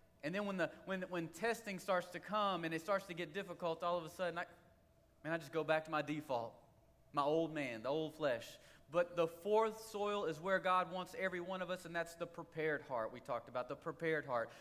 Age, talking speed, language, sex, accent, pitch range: 30-49, 240 wpm, English, male, American, 140-170 Hz